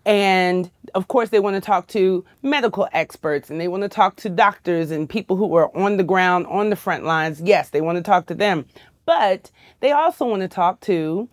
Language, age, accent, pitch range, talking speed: English, 30-49, American, 180-220 Hz, 220 wpm